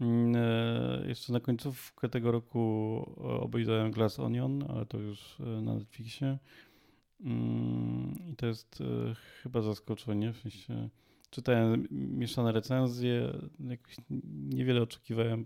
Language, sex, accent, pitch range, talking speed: Polish, male, native, 100-120 Hz, 95 wpm